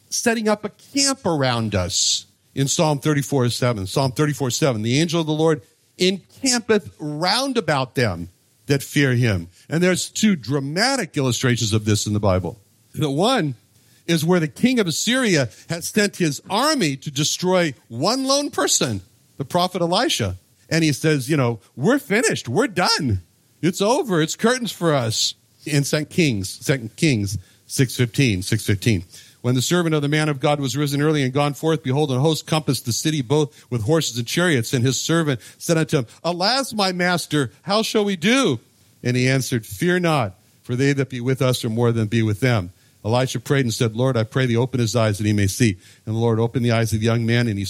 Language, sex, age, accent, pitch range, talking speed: English, male, 60-79, American, 115-165 Hz, 200 wpm